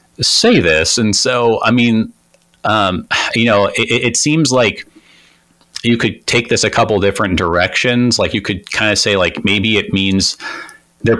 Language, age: English, 30-49